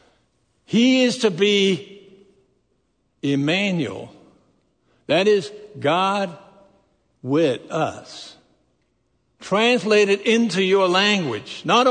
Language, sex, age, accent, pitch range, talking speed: English, male, 60-79, American, 150-215 Hz, 80 wpm